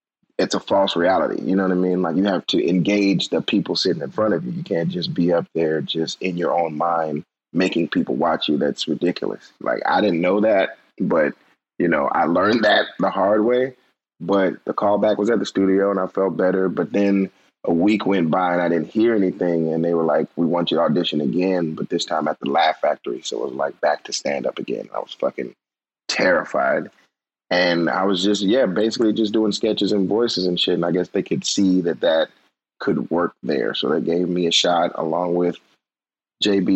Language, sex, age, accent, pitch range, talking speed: English, male, 30-49, American, 85-100 Hz, 225 wpm